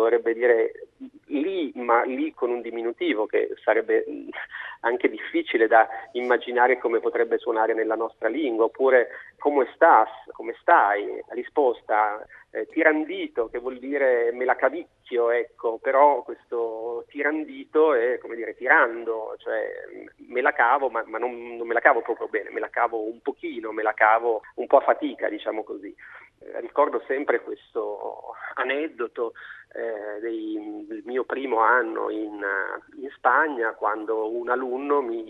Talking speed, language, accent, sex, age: 150 wpm, Italian, native, male, 40-59